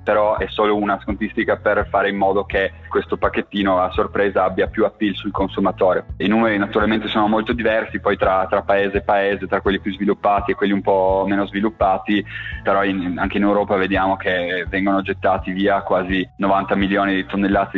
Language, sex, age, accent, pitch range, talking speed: Italian, male, 20-39, native, 95-105 Hz, 190 wpm